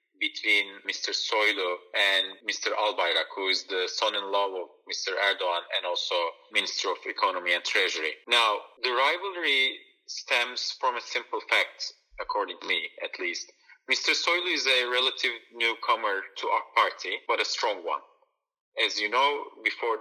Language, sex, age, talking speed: English, male, 40-59, 145 wpm